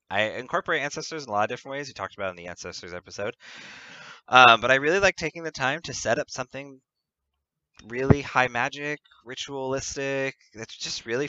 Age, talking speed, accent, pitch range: 20-39, 190 wpm, American, 90-125 Hz